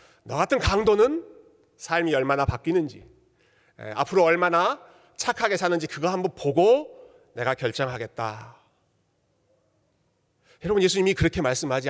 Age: 40-59